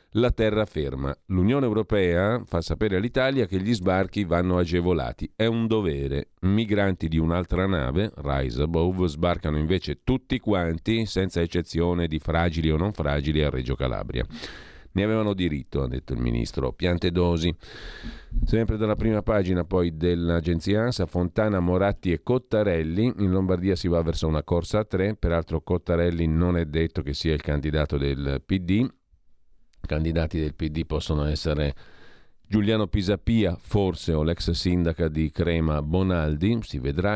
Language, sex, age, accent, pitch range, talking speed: Italian, male, 50-69, native, 80-100 Hz, 145 wpm